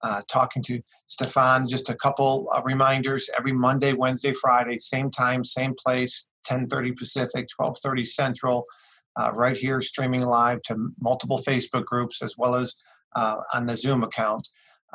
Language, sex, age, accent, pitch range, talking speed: English, male, 40-59, American, 120-135 Hz, 155 wpm